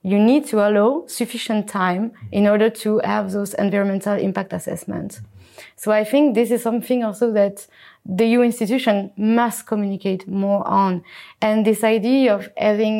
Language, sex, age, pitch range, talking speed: English, female, 20-39, 190-225 Hz, 155 wpm